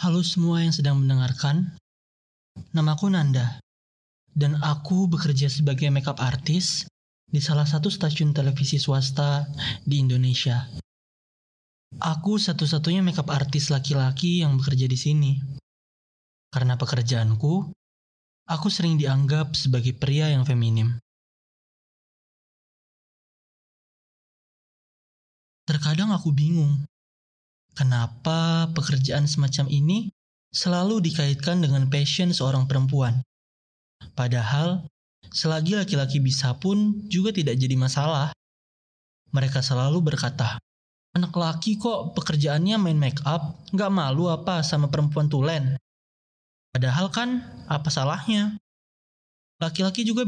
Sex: male